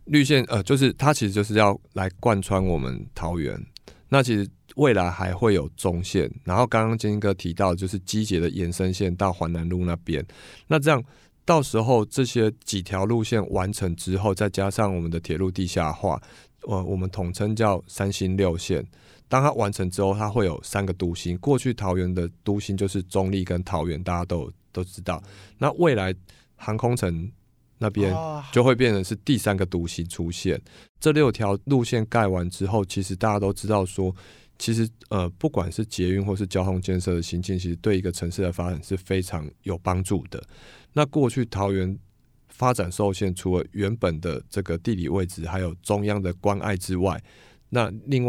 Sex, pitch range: male, 90-110 Hz